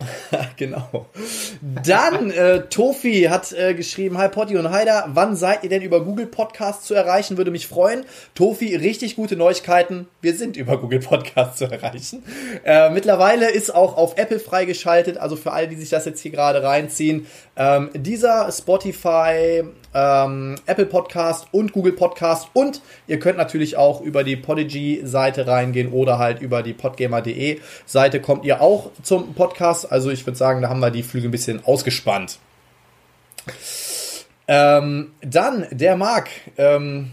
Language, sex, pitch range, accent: German, male, 135-185 Hz, German